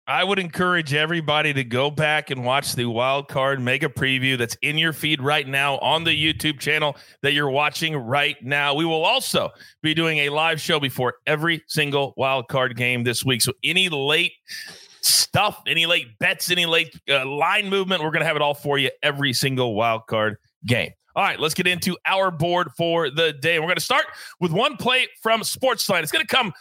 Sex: male